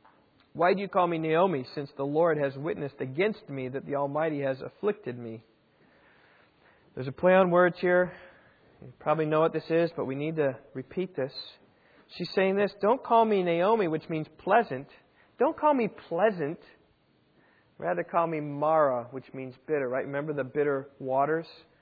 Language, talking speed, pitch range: English, 175 wpm, 135-185 Hz